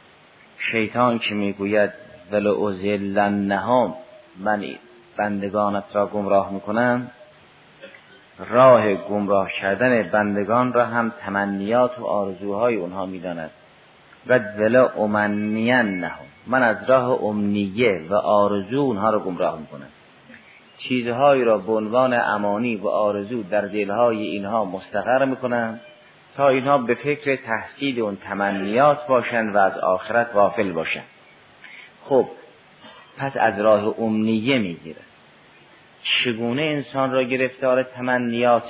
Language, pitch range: Persian, 105-125 Hz